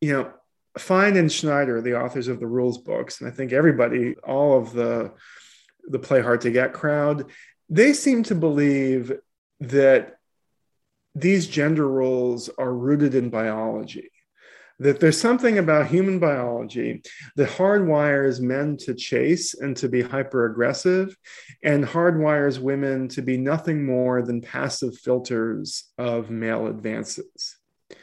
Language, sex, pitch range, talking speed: English, male, 125-165 Hz, 140 wpm